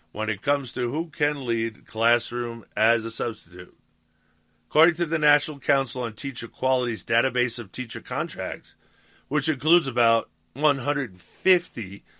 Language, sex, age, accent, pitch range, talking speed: English, male, 50-69, American, 115-140 Hz, 135 wpm